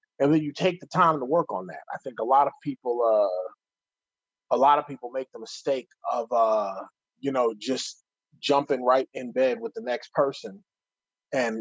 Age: 30-49